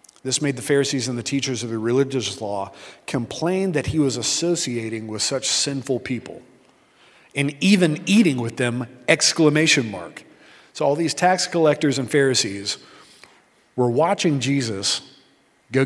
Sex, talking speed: male, 145 wpm